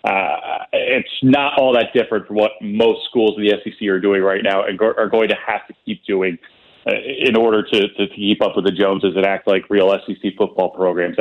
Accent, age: American, 30-49